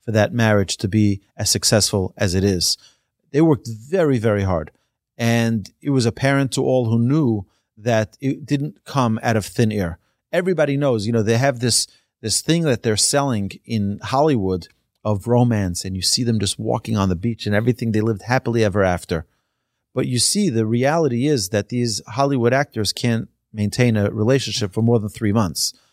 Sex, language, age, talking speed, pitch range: male, English, 30-49, 190 wpm, 105-135 Hz